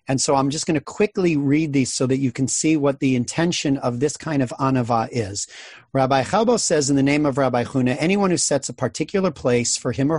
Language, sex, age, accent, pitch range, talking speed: English, male, 40-59, American, 125-150 Hz, 240 wpm